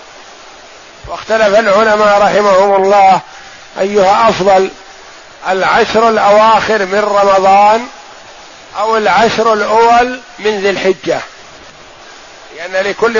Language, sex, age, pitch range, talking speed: Arabic, male, 50-69, 195-225 Hz, 80 wpm